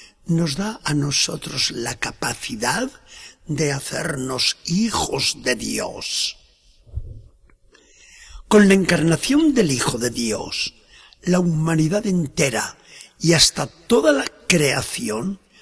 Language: Spanish